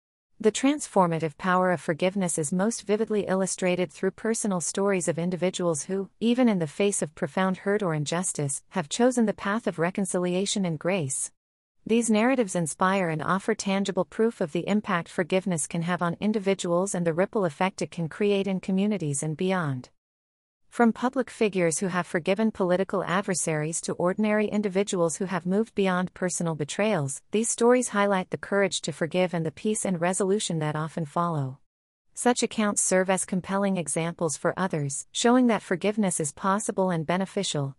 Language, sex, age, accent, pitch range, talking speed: English, female, 40-59, American, 170-200 Hz, 165 wpm